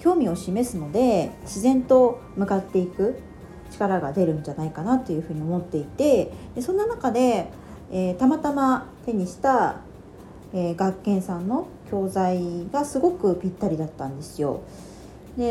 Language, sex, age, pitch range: Japanese, female, 40-59, 165-240 Hz